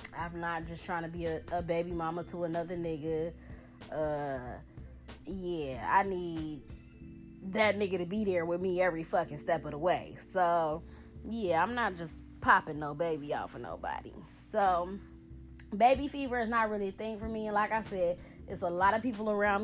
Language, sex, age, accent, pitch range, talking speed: English, female, 20-39, American, 170-235 Hz, 185 wpm